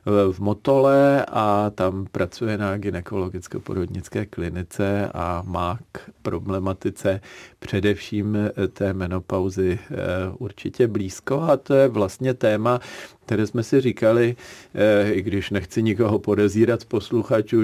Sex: male